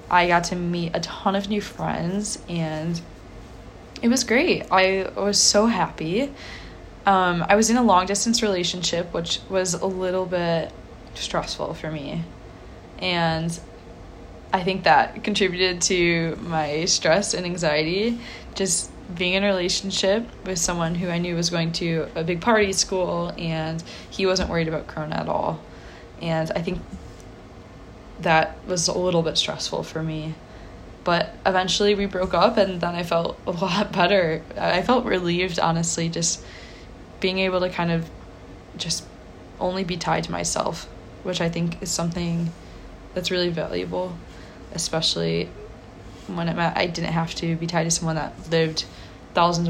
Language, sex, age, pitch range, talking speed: English, female, 20-39, 150-190 Hz, 155 wpm